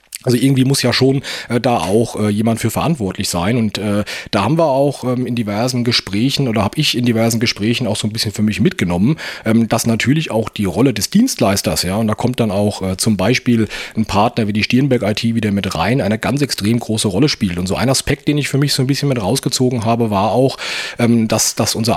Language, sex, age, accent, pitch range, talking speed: German, male, 30-49, German, 105-130 Hz, 220 wpm